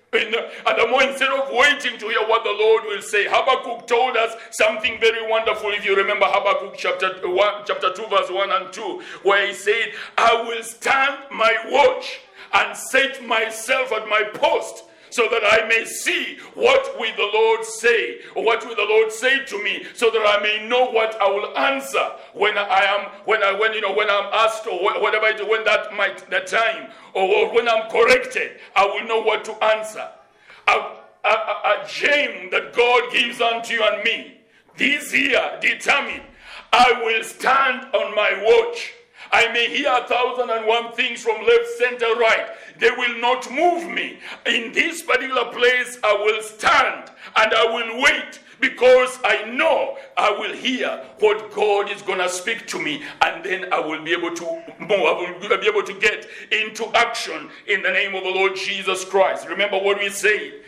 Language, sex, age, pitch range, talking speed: English, male, 60-79, 210-270 Hz, 190 wpm